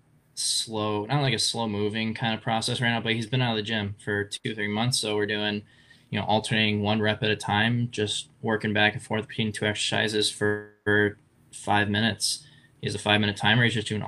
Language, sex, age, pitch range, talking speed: English, male, 20-39, 100-115 Hz, 225 wpm